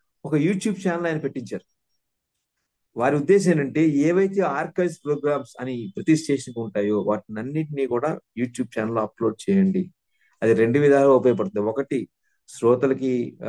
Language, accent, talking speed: Telugu, native, 125 wpm